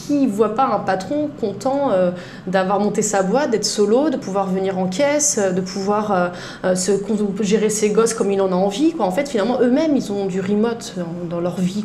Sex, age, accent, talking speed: female, 20-39, French, 230 wpm